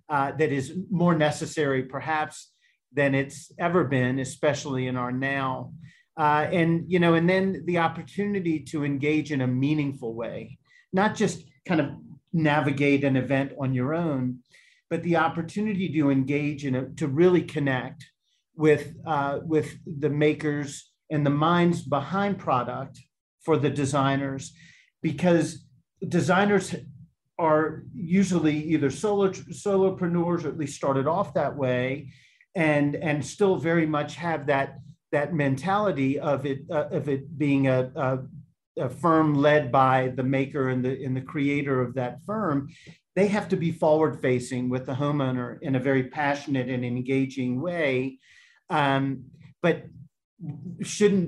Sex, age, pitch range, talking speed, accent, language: male, 40-59, 135-165 Hz, 145 wpm, American, English